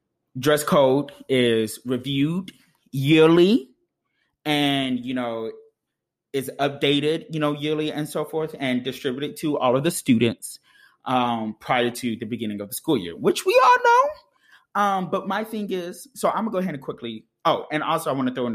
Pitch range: 120-175 Hz